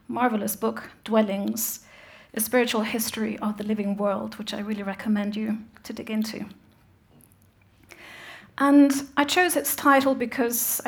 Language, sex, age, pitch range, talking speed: English, female, 40-59, 215-250 Hz, 130 wpm